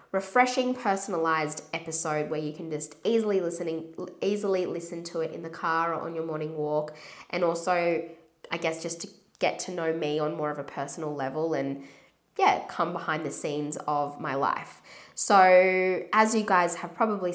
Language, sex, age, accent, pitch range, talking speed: English, female, 20-39, Australian, 155-175 Hz, 180 wpm